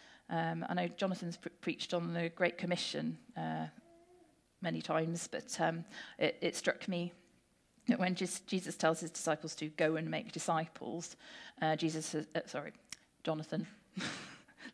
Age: 40-59